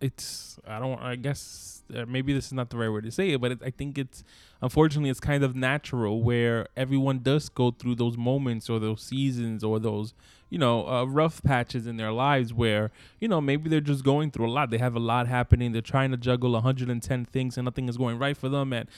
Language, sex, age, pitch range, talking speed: English, male, 20-39, 120-140 Hz, 235 wpm